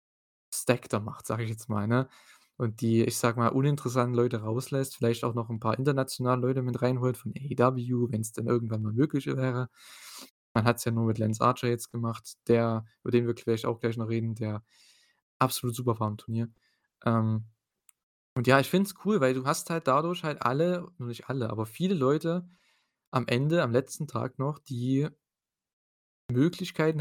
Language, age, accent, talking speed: German, 20-39, German, 195 wpm